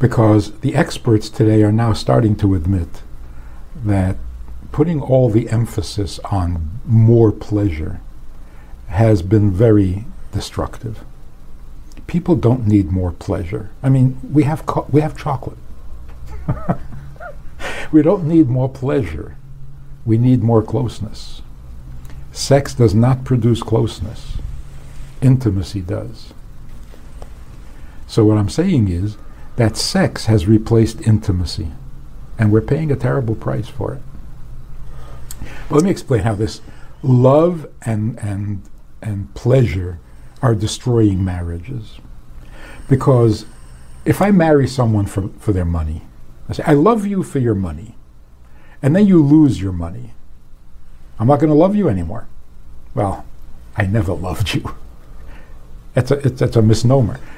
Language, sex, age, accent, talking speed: English, male, 60-79, American, 130 wpm